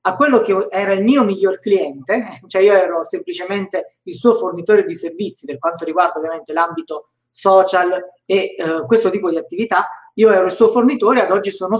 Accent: native